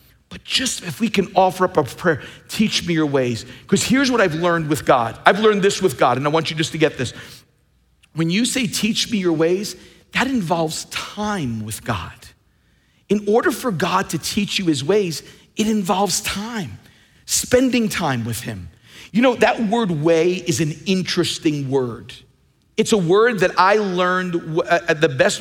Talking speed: 185 wpm